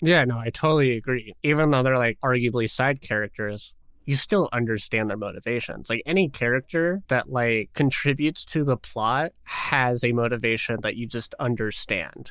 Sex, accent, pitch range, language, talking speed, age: male, American, 115-140 Hz, English, 160 wpm, 20-39